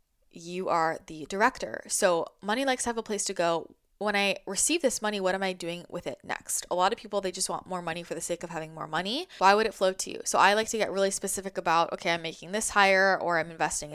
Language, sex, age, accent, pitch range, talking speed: English, female, 20-39, American, 180-215 Hz, 270 wpm